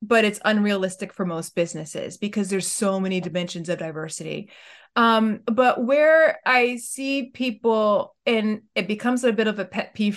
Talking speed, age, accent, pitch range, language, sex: 165 wpm, 30-49, American, 185-230 Hz, English, female